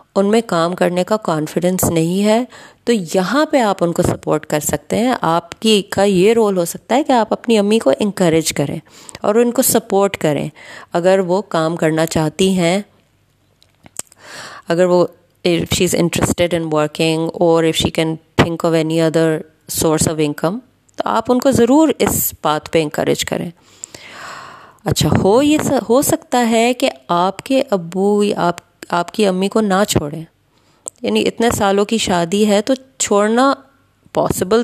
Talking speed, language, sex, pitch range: 170 wpm, Urdu, female, 170-235 Hz